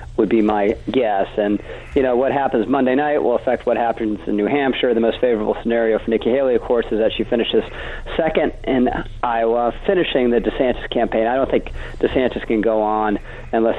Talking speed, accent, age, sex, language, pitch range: 200 wpm, American, 40-59, male, English, 110-125 Hz